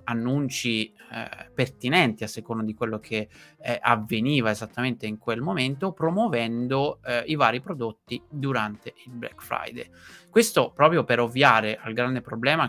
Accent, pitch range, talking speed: native, 110-130 Hz, 140 wpm